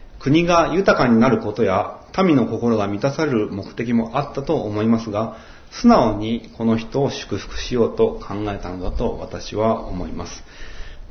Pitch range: 95-120 Hz